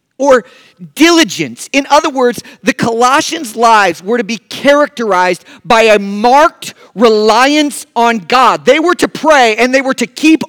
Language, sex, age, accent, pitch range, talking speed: English, male, 40-59, American, 185-260 Hz, 155 wpm